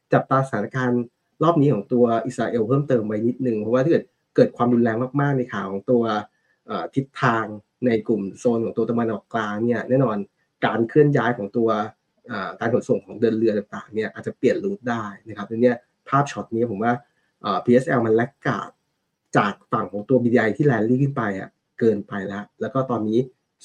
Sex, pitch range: male, 110-135 Hz